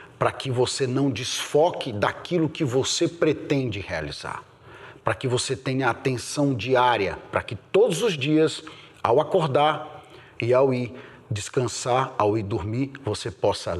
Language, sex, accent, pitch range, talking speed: Portuguese, male, Brazilian, 115-155 Hz, 140 wpm